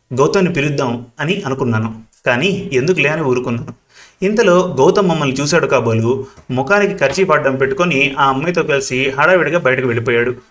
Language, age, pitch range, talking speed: Telugu, 30-49, 120-165 Hz, 135 wpm